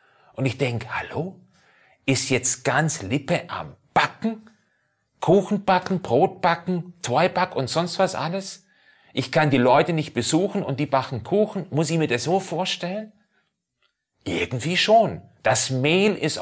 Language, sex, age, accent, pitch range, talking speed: German, male, 40-59, German, 120-180 Hz, 150 wpm